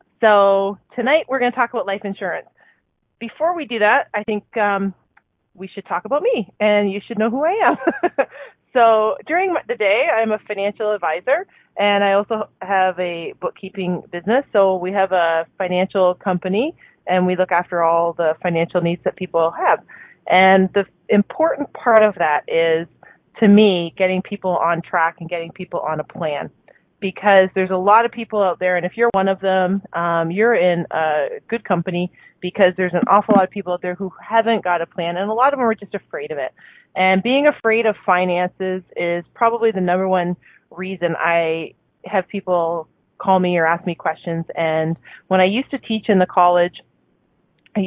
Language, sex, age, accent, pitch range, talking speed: English, female, 30-49, American, 180-215 Hz, 190 wpm